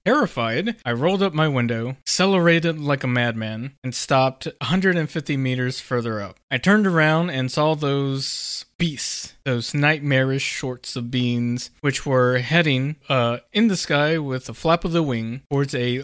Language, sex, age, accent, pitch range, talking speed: English, male, 20-39, American, 125-160 Hz, 160 wpm